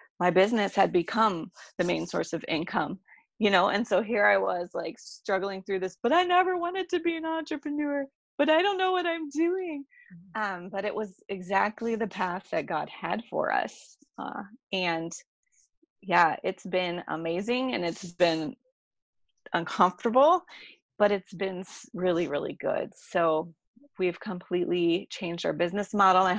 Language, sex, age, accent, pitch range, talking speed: English, female, 30-49, American, 175-245 Hz, 160 wpm